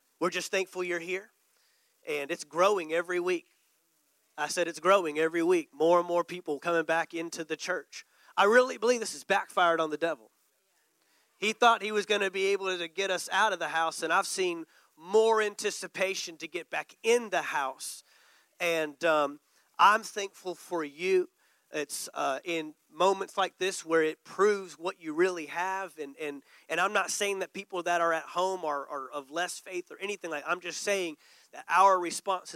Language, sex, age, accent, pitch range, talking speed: English, male, 30-49, American, 165-200 Hz, 195 wpm